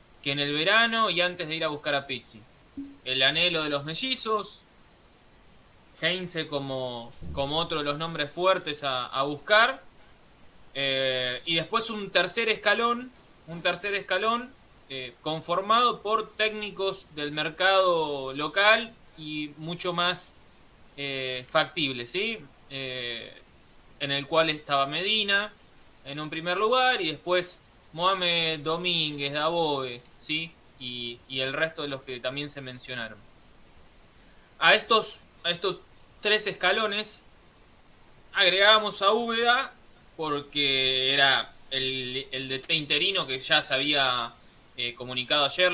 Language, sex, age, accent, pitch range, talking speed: Spanish, male, 20-39, Argentinian, 135-190 Hz, 130 wpm